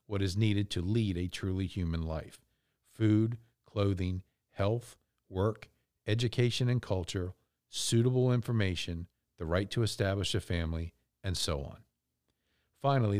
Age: 50-69